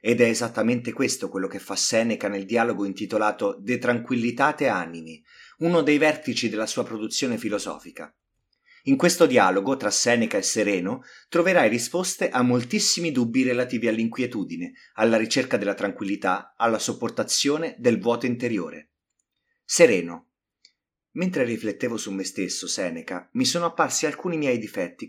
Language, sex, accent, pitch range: Italian, male, native, 110-155 Hz